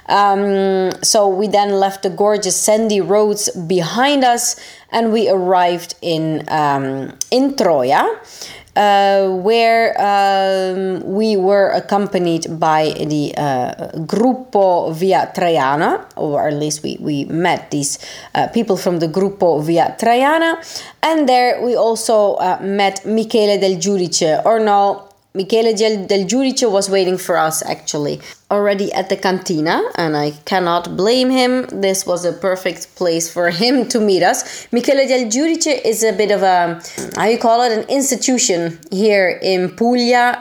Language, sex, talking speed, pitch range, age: Italian, female, 145 wpm, 180-225 Hz, 30-49